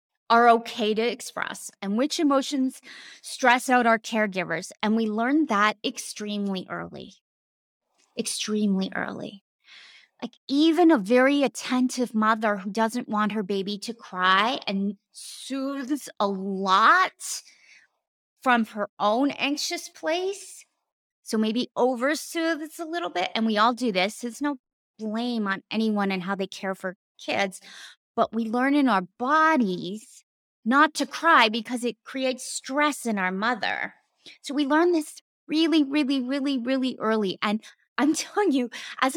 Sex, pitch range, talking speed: female, 215-295 Hz, 145 wpm